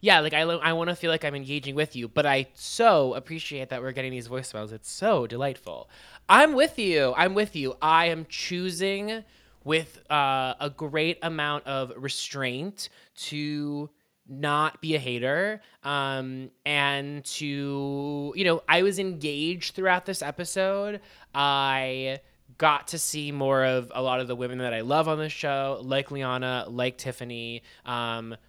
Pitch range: 130-170 Hz